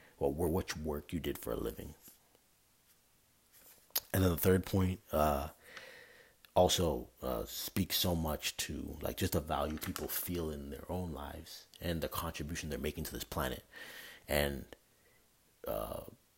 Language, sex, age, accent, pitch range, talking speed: English, male, 30-49, American, 75-95 Hz, 145 wpm